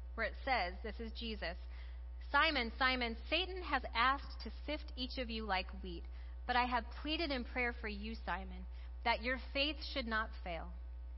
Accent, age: American, 30-49